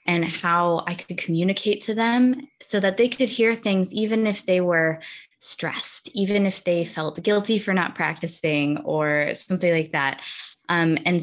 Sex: female